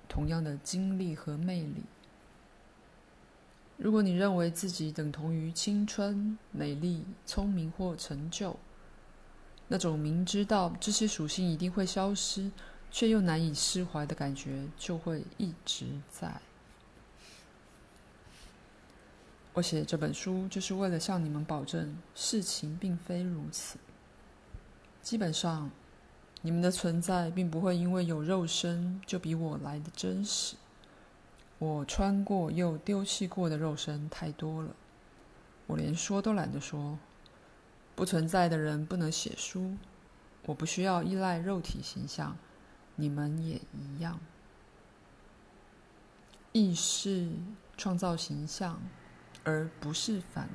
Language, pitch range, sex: Chinese, 155-190 Hz, female